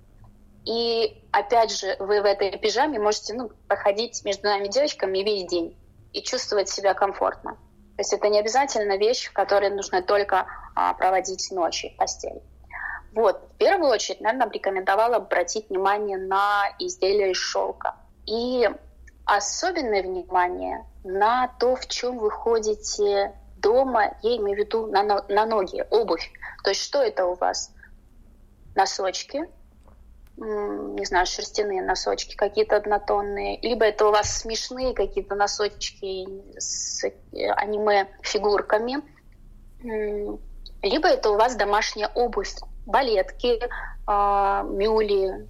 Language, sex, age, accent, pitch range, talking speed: Russian, female, 20-39, native, 190-225 Hz, 120 wpm